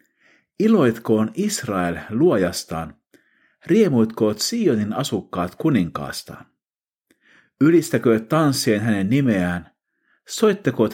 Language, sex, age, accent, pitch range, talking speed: Finnish, male, 50-69, native, 95-150 Hz, 65 wpm